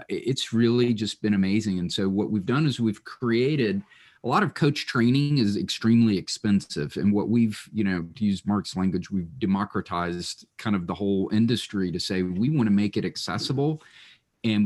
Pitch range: 100-120 Hz